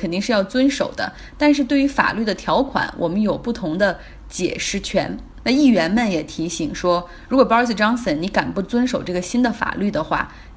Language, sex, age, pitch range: Chinese, female, 20-39, 175-245 Hz